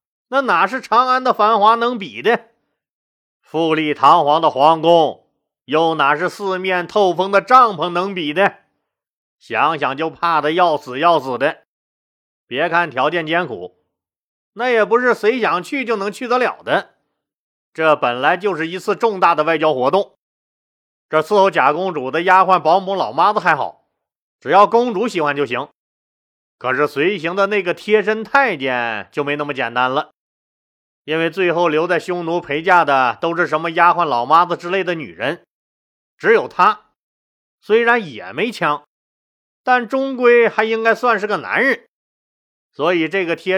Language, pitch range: Chinese, 155-215 Hz